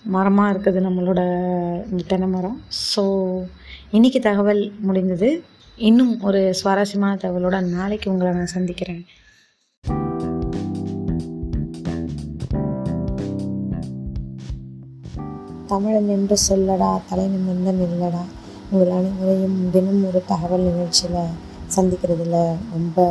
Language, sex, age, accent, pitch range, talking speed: Tamil, female, 20-39, native, 170-195 Hz, 80 wpm